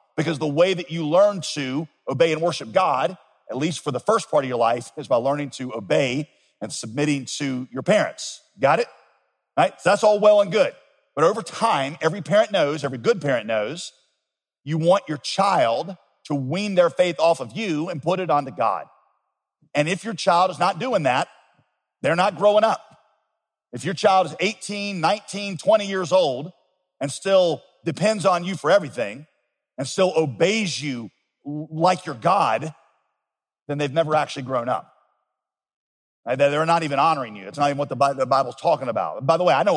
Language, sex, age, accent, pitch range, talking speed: English, male, 50-69, American, 140-190 Hz, 185 wpm